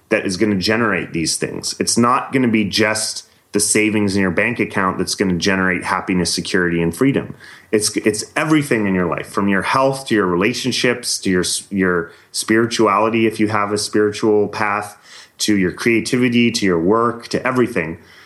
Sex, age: male, 30-49